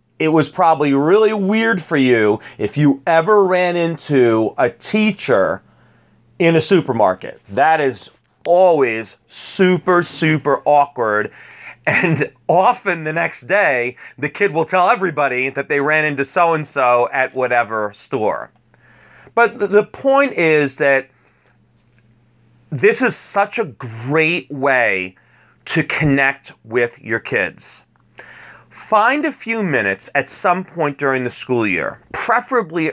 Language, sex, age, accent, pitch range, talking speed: English, male, 30-49, American, 120-195 Hz, 125 wpm